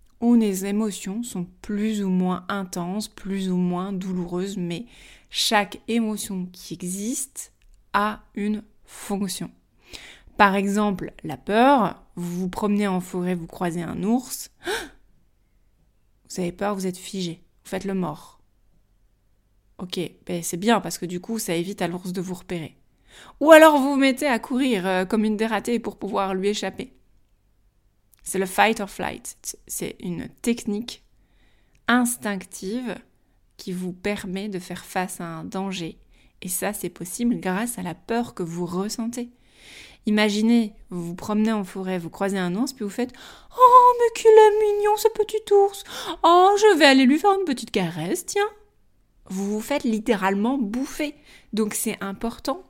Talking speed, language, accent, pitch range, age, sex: 160 wpm, French, French, 180-235 Hz, 20-39, female